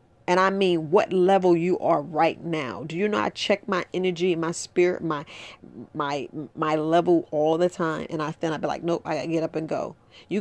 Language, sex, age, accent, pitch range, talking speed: English, female, 40-59, American, 165-200 Hz, 225 wpm